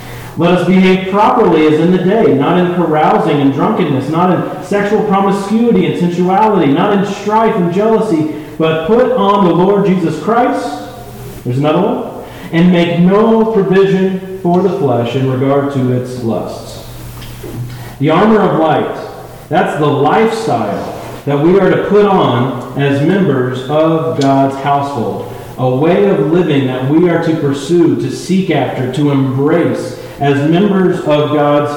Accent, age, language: American, 40-59, English